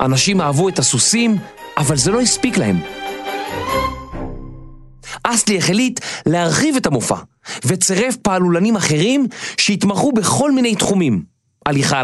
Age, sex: 40-59, male